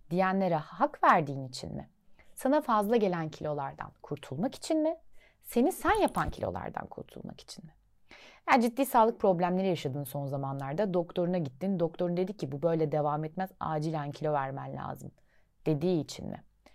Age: 30-49